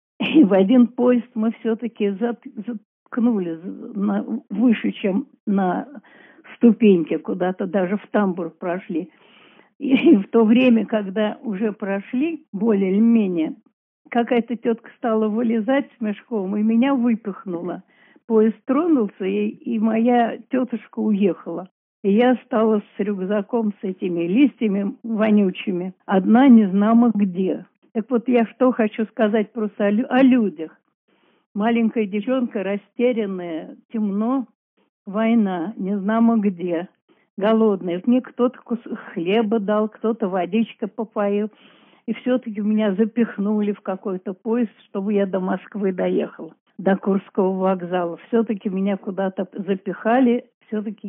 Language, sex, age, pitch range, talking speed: Russian, female, 50-69, 195-235 Hz, 115 wpm